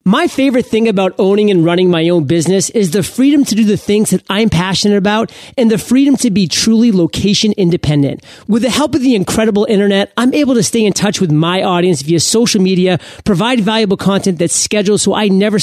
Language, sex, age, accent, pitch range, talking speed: English, male, 30-49, American, 180-230 Hz, 215 wpm